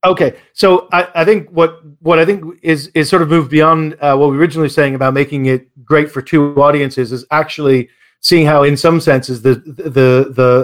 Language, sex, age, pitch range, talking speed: English, male, 40-59, 130-160 Hz, 215 wpm